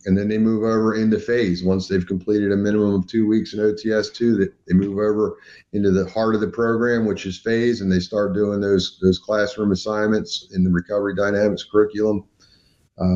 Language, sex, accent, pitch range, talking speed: English, male, American, 95-110 Hz, 195 wpm